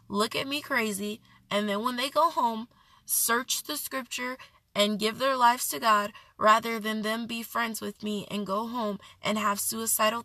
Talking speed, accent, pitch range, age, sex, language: 185 wpm, American, 200-235 Hz, 20-39, female, English